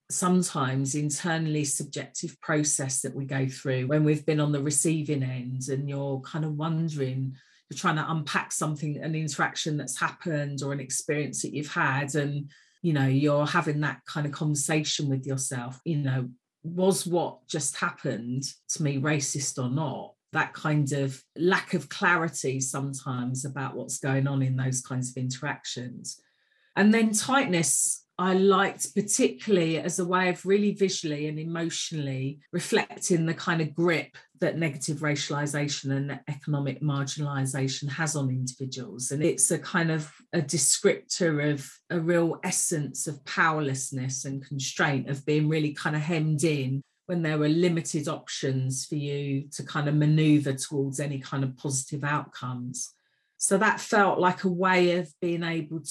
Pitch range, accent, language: 135-165 Hz, British, English